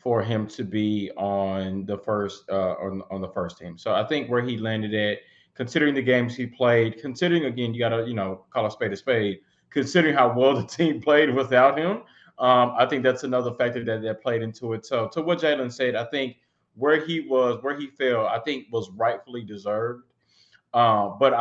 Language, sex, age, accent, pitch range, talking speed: English, male, 20-39, American, 115-160 Hz, 210 wpm